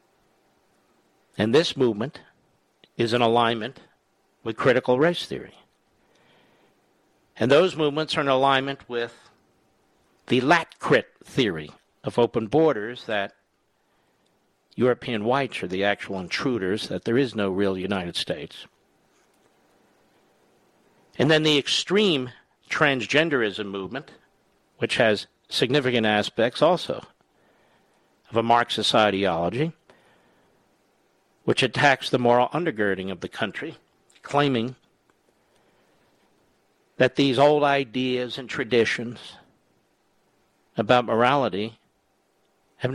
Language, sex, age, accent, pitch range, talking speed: English, male, 50-69, American, 105-135 Hz, 100 wpm